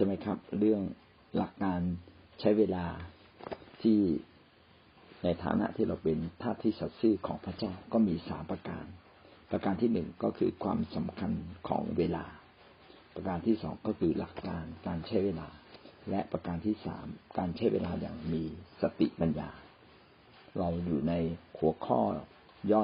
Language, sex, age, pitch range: Thai, male, 60-79, 85-100 Hz